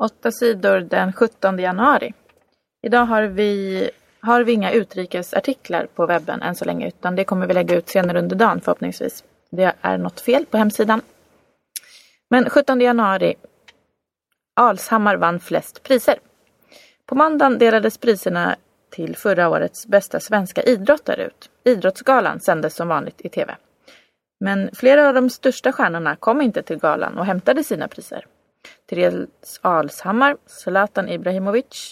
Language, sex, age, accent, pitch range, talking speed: Swedish, female, 30-49, native, 190-245 Hz, 140 wpm